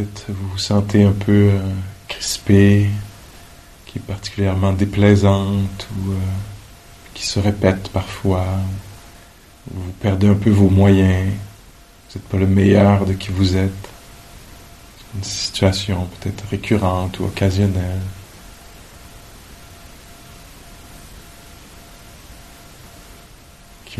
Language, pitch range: English, 95-100 Hz